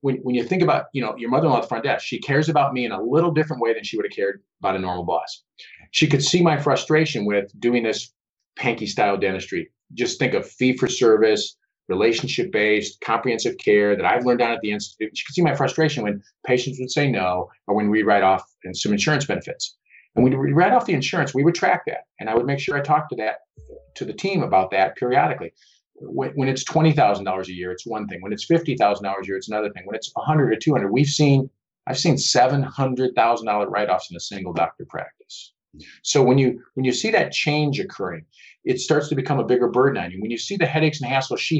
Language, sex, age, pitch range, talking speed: English, male, 40-59, 105-155 Hz, 240 wpm